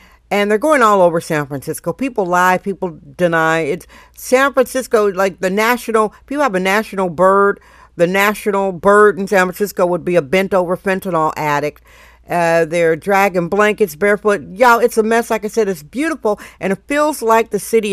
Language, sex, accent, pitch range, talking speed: English, female, American, 185-220 Hz, 185 wpm